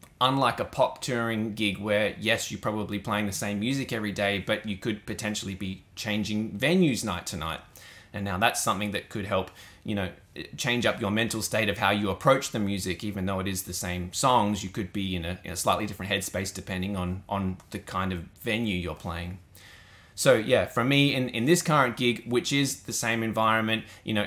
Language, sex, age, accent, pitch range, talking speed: English, male, 20-39, Australian, 95-115 Hz, 215 wpm